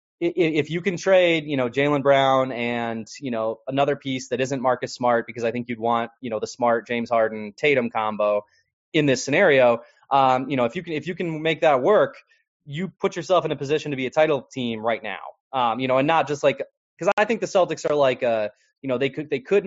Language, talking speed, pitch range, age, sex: English, 240 wpm, 120-160 Hz, 20-39, male